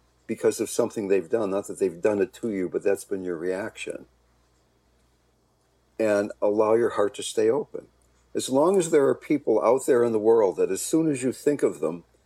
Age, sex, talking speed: 60-79, male, 210 wpm